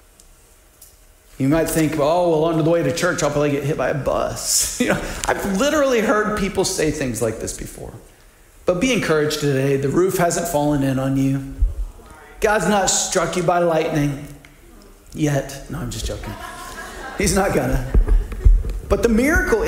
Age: 40-59